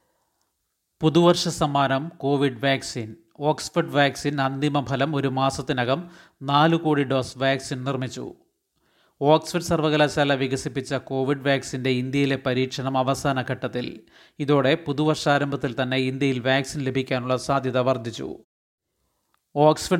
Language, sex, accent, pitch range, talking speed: Malayalam, male, native, 130-150 Hz, 100 wpm